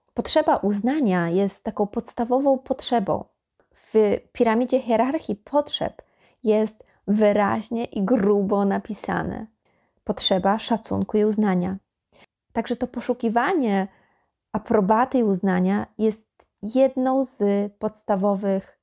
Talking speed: 90 wpm